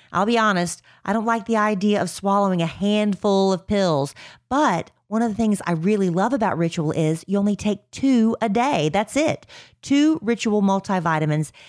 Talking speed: 185 wpm